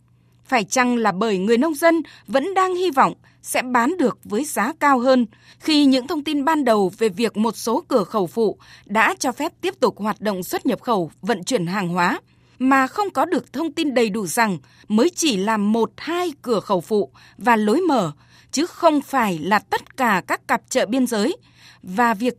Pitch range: 215-290 Hz